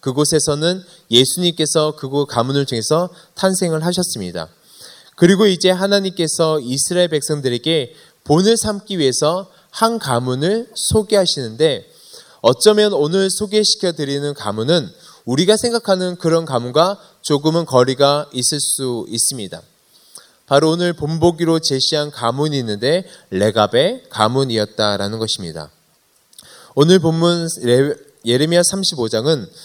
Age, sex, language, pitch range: 20-39, male, Korean, 130-175 Hz